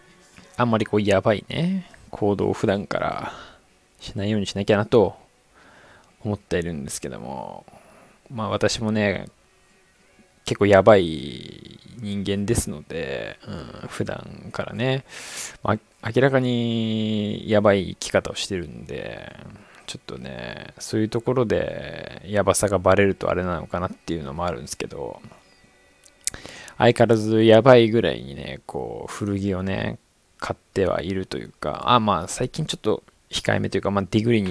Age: 20-39